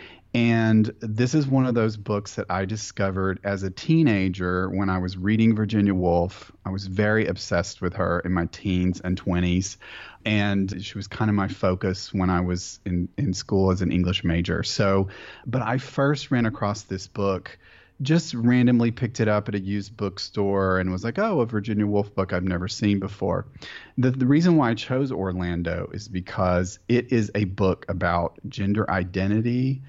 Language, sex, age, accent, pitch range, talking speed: English, male, 30-49, American, 95-115 Hz, 185 wpm